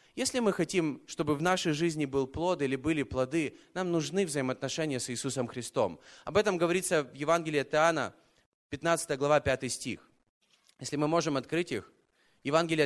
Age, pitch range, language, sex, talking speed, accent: 20-39, 135-175 Hz, Russian, male, 165 wpm, native